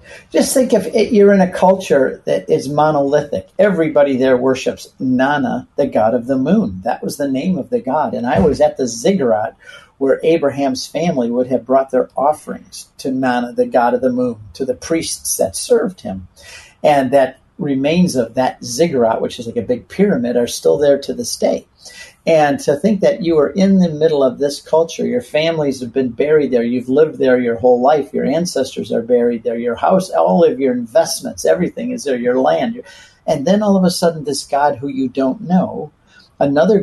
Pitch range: 125-190 Hz